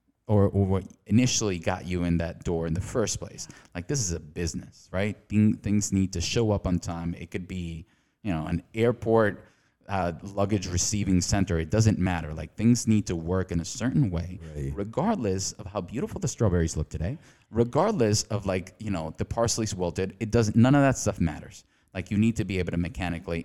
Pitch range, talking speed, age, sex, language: 85-105 Hz, 200 wpm, 20-39, male, English